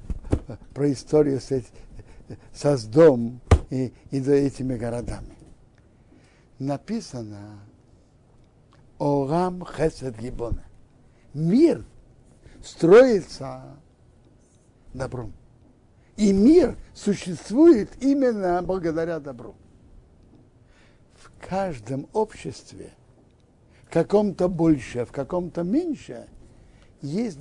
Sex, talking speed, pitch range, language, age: male, 75 wpm, 120-180 Hz, Russian, 60-79